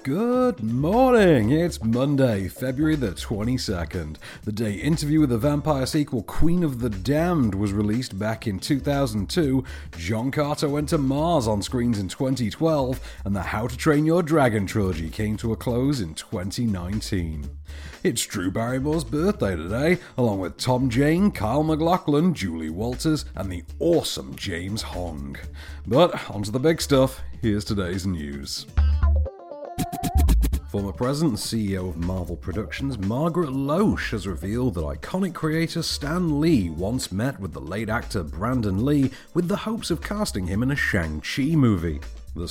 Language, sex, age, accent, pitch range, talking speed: English, male, 40-59, British, 95-145 Hz, 150 wpm